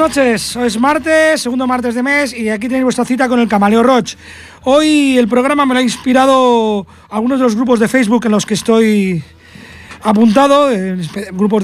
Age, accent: 30-49, Spanish